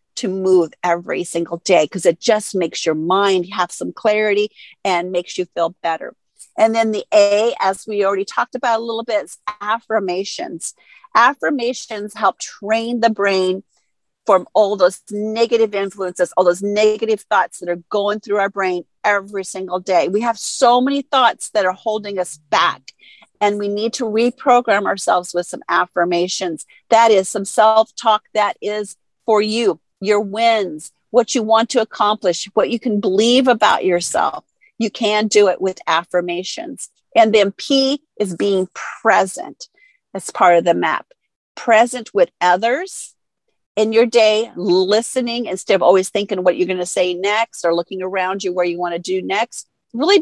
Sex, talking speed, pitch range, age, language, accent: female, 165 wpm, 185-230 Hz, 50-69, English, American